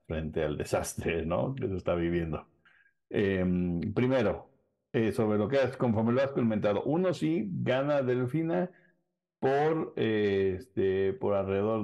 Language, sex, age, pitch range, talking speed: Spanish, male, 50-69, 100-135 Hz, 140 wpm